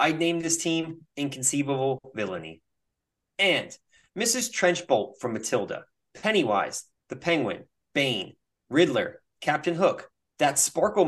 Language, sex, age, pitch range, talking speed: English, male, 30-49, 125-185 Hz, 110 wpm